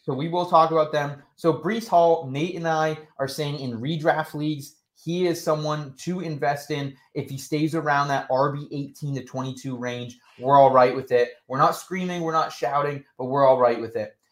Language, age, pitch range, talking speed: English, 20-39, 135-165 Hz, 210 wpm